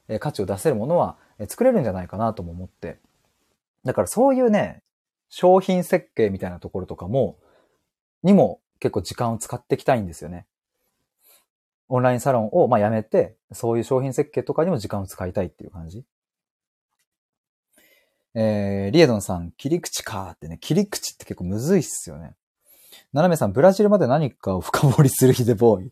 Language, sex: Japanese, male